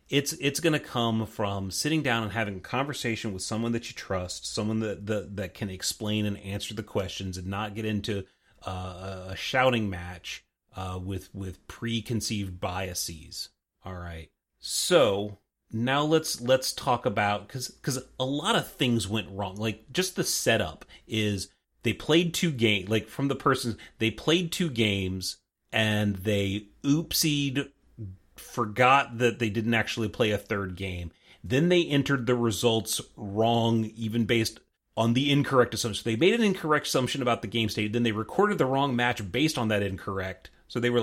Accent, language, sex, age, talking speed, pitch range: American, English, male, 30-49, 175 wpm, 100-130 Hz